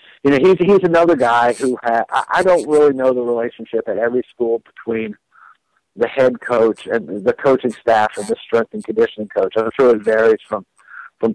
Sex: male